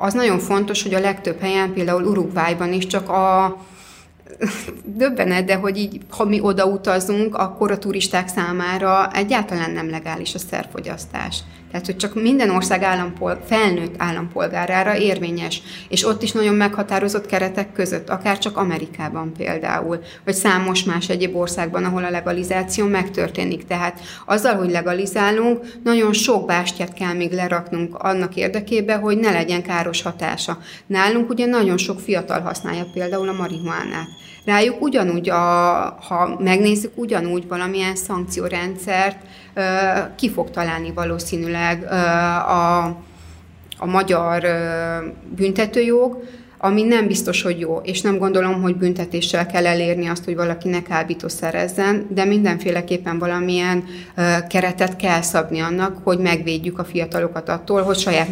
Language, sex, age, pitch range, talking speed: Hungarian, female, 30-49, 175-195 Hz, 135 wpm